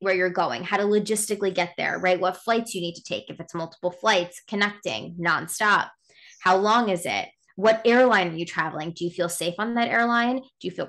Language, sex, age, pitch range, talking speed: English, female, 20-39, 180-240 Hz, 220 wpm